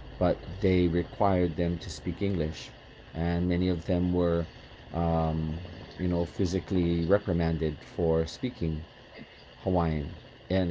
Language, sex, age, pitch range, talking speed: English, male, 40-59, 85-100 Hz, 120 wpm